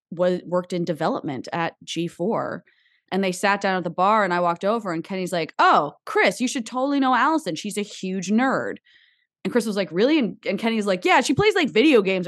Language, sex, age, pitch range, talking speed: English, female, 20-39, 175-245 Hz, 225 wpm